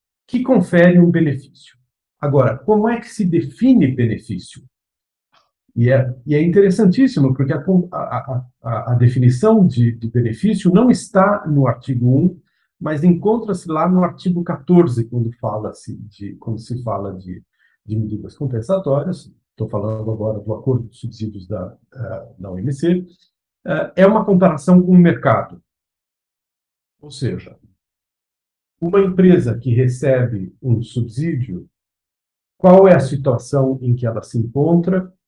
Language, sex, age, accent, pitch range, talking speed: Portuguese, male, 50-69, Brazilian, 120-180 Hz, 130 wpm